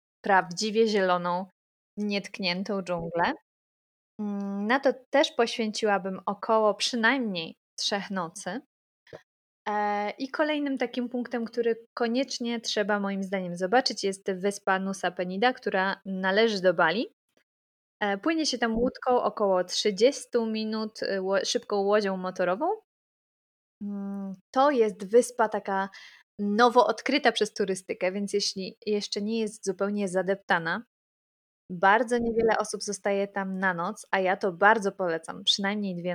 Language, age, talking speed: Polish, 20-39, 115 wpm